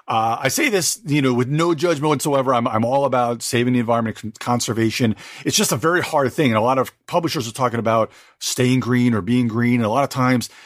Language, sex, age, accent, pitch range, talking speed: English, male, 40-59, American, 120-160 Hz, 235 wpm